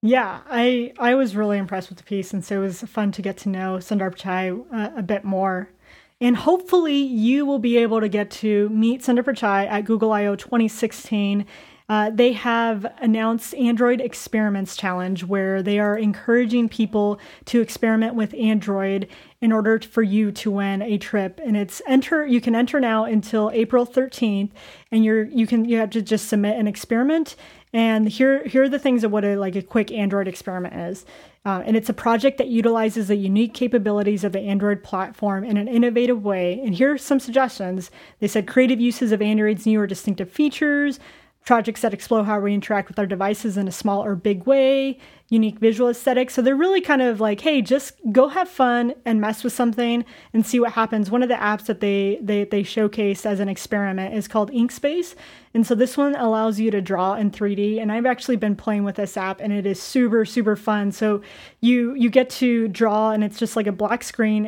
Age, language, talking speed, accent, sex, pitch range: 30-49, English, 210 wpm, American, female, 205-240 Hz